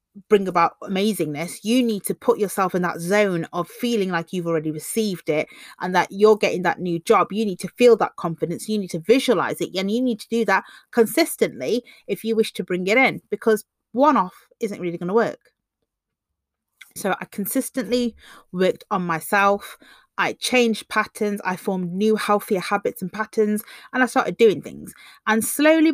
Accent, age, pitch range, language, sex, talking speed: British, 30-49, 180-220 Hz, English, female, 185 wpm